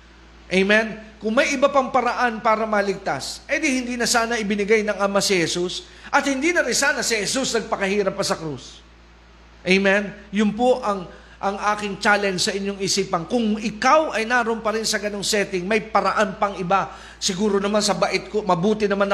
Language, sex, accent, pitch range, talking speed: Filipino, male, native, 190-250 Hz, 185 wpm